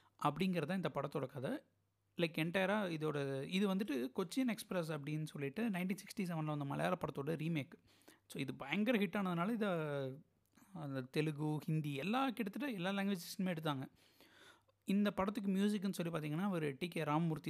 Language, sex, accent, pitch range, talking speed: Tamil, male, native, 150-205 Hz, 145 wpm